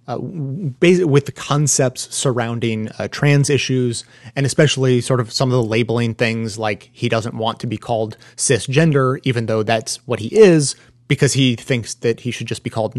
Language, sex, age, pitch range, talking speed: English, male, 30-49, 115-140 Hz, 190 wpm